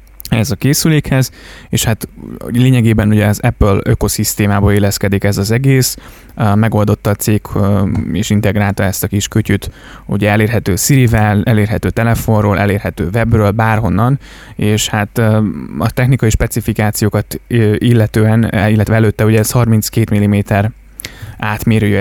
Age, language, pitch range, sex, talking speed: 20-39, Hungarian, 100-115 Hz, male, 120 wpm